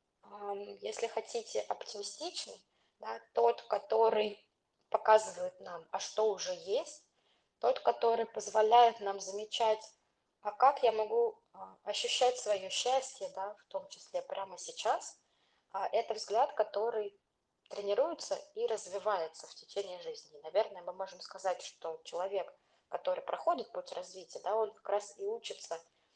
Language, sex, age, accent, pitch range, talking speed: Russian, female, 20-39, native, 195-265 Hz, 130 wpm